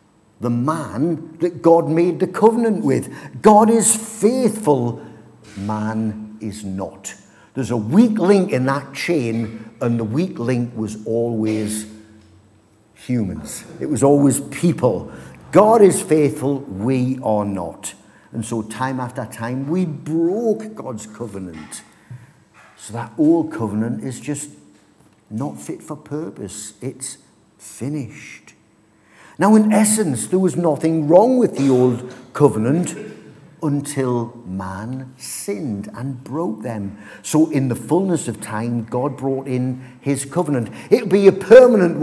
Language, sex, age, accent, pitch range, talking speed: English, male, 50-69, British, 110-165 Hz, 130 wpm